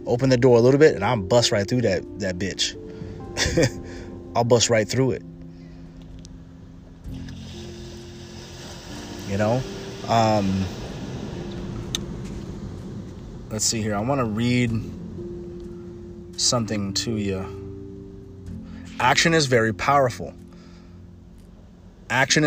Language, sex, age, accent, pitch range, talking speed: English, male, 30-49, American, 90-130 Hz, 100 wpm